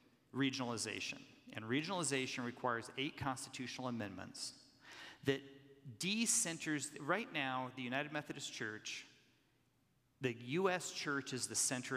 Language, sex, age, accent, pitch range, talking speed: English, male, 40-59, American, 125-150 Hz, 105 wpm